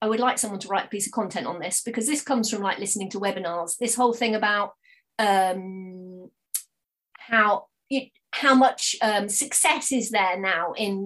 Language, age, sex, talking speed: English, 30-49, female, 190 wpm